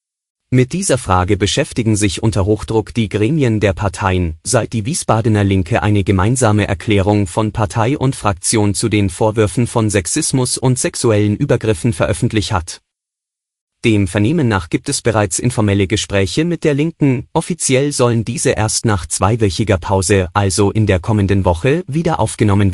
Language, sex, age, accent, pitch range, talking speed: German, male, 30-49, German, 100-125 Hz, 150 wpm